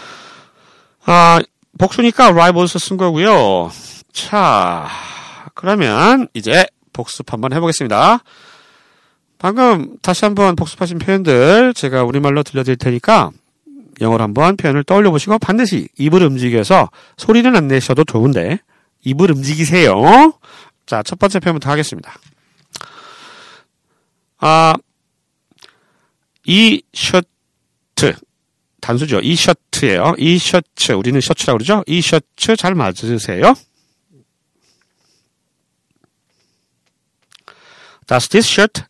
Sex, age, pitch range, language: male, 40-59, 145-225 Hz, Korean